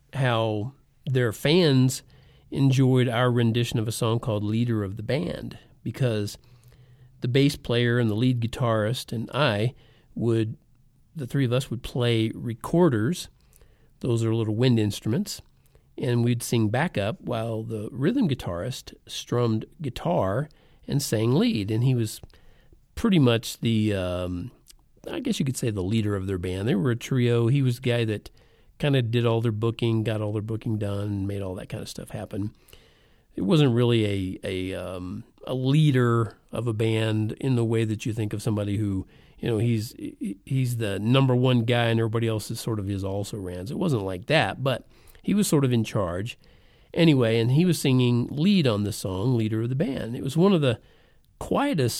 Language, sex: English, male